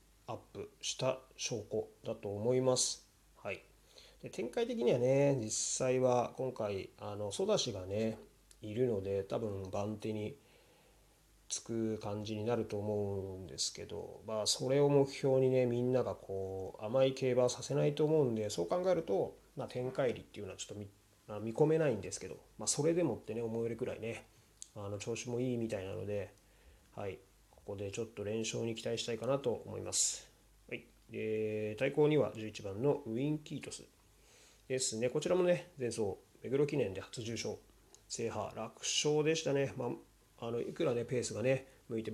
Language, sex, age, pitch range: Japanese, male, 30-49, 105-130 Hz